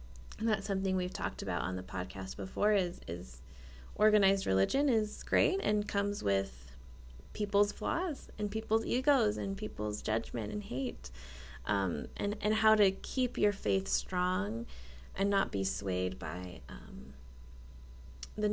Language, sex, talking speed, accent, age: English, female, 145 wpm, American, 20-39